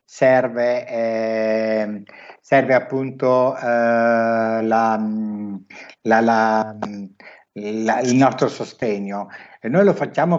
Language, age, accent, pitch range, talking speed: Italian, 60-79, native, 120-145 Hz, 90 wpm